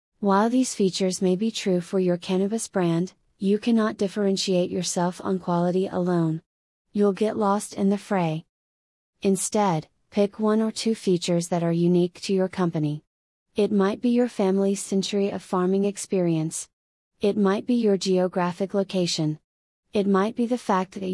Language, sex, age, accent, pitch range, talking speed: English, female, 30-49, American, 175-205 Hz, 160 wpm